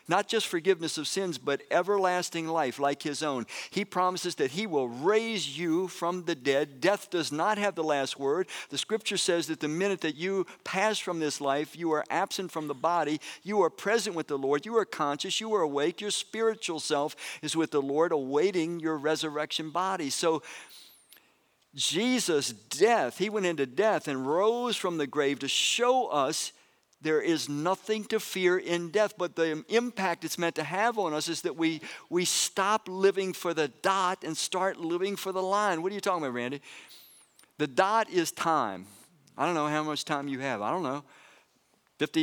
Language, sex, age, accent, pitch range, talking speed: English, male, 50-69, American, 150-195 Hz, 195 wpm